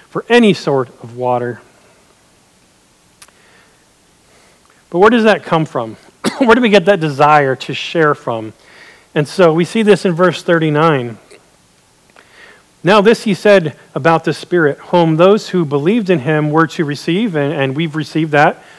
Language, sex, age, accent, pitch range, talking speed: English, male, 40-59, American, 150-200 Hz, 155 wpm